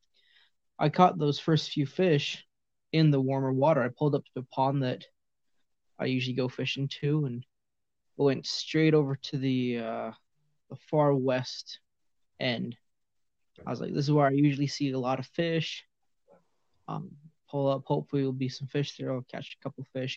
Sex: male